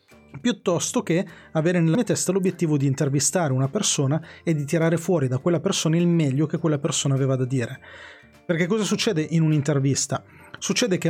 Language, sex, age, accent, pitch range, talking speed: Italian, male, 30-49, native, 145-195 Hz, 180 wpm